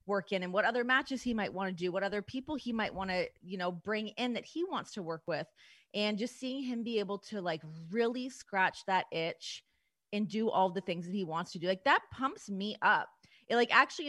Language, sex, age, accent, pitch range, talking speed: English, female, 30-49, American, 185-230 Hz, 245 wpm